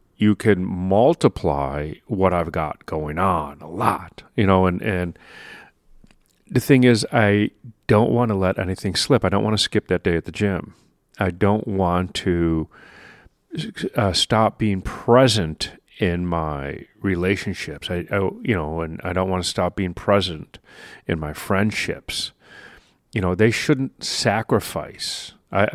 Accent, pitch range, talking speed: American, 85-105 Hz, 155 wpm